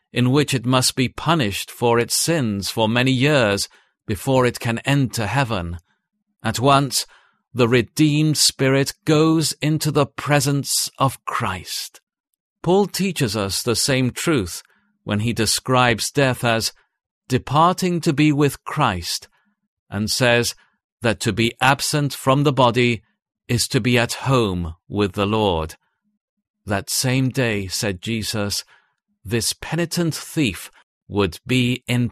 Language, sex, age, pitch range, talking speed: English, male, 50-69, 110-150 Hz, 135 wpm